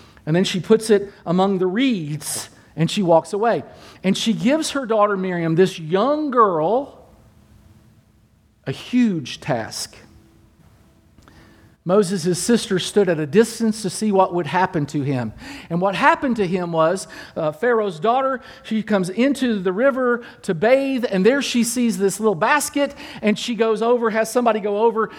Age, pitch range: 40-59, 130-220 Hz